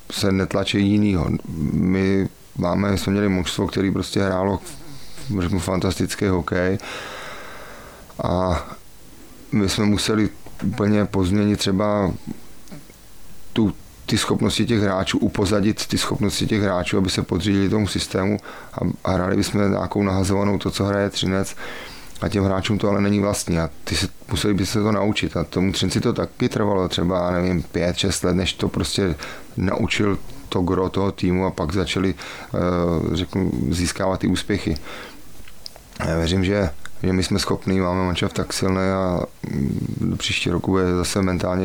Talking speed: 150 wpm